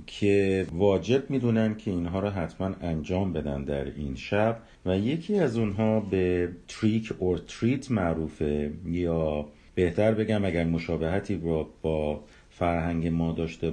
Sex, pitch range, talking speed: male, 80-110 Hz, 135 wpm